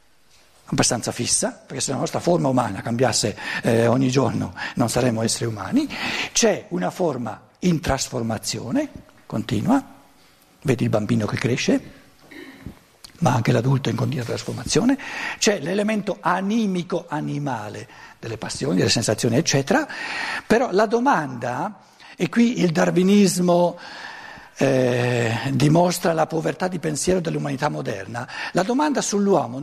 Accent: native